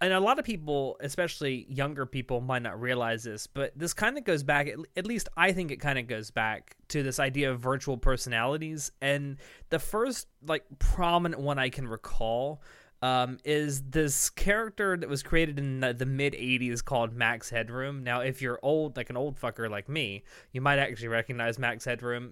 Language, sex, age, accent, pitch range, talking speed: English, male, 20-39, American, 120-150 Hz, 195 wpm